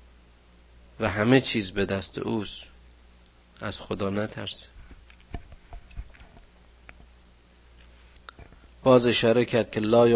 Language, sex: Persian, male